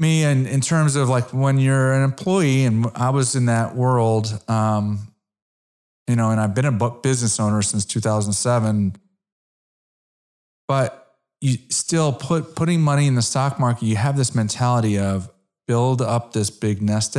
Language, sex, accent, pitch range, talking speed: English, male, American, 105-135 Hz, 165 wpm